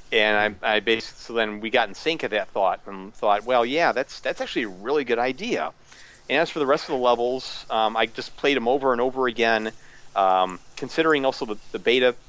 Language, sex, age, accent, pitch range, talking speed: English, male, 40-59, American, 110-135 Hz, 230 wpm